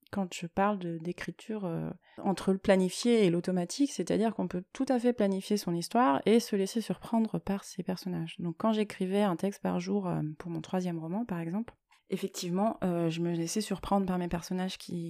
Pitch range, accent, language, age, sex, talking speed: 175-220 Hz, French, French, 20-39, female, 195 wpm